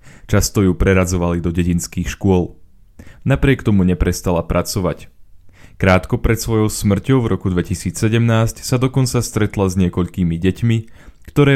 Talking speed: 125 wpm